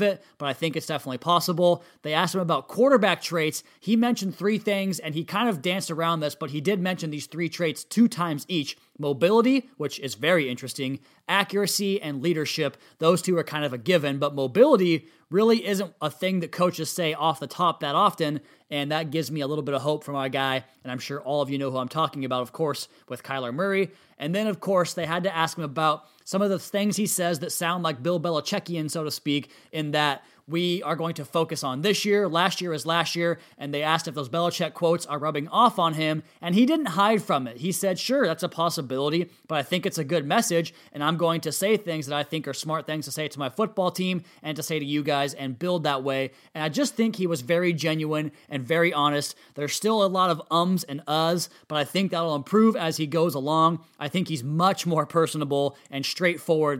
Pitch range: 150-180 Hz